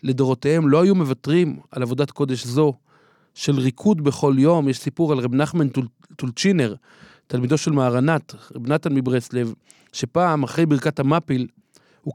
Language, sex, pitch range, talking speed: Hebrew, male, 130-165 Hz, 150 wpm